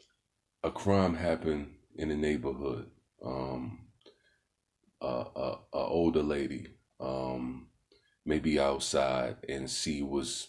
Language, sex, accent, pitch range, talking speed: English, male, American, 70-80 Hz, 115 wpm